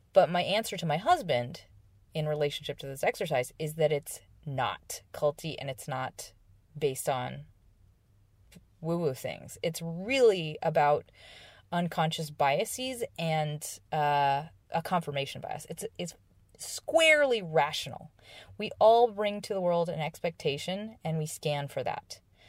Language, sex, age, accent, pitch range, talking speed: English, female, 20-39, American, 130-180 Hz, 135 wpm